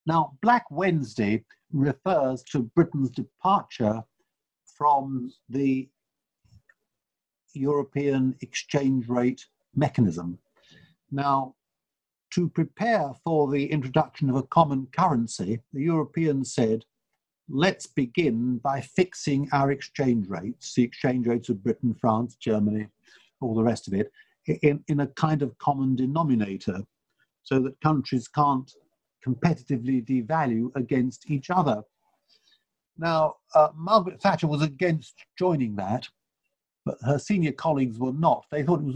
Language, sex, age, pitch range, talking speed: English, male, 60-79, 125-155 Hz, 120 wpm